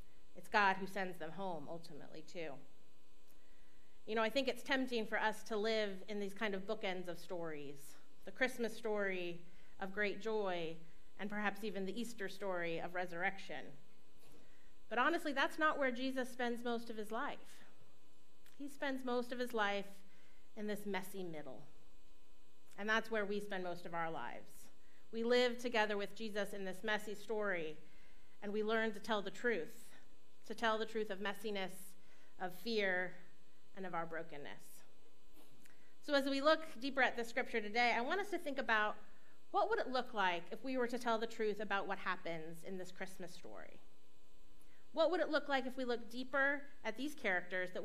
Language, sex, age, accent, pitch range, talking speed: English, female, 30-49, American, 175-230 Hz, 180 wpm